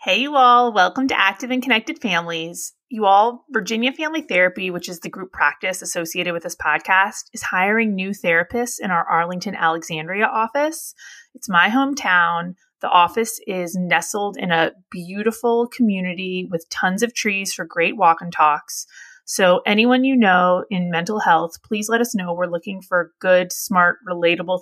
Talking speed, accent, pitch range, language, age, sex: 170 wpm, American, 175-230 Hz, English, 30-49, female